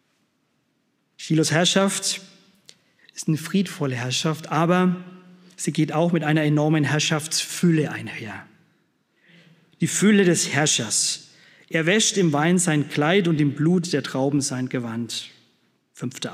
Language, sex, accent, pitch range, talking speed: German, male, German, 150-185 Hz, 120 wpm